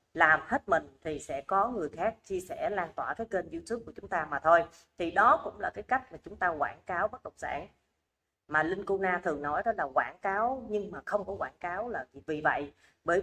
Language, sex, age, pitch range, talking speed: Vietnamese, female, 30-49, 165-230 Hz, 240 wpm